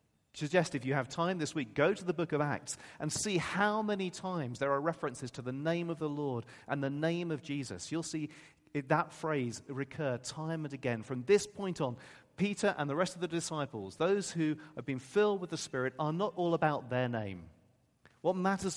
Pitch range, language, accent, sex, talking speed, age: 130-175 Hz, English, British, male, 215 wpm, 40-59